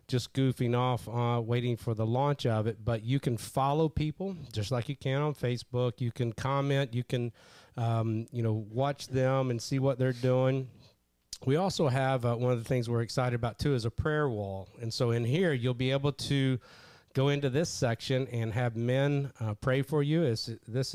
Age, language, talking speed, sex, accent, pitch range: 40-59, English, 210 wpm, male, American, 115-135 Hz